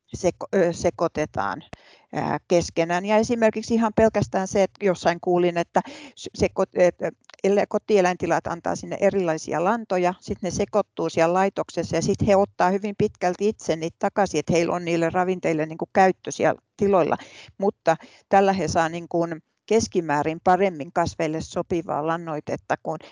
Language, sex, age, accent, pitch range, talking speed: Finnish, female, 60-79, native, 160-190 Hz, 125 wpm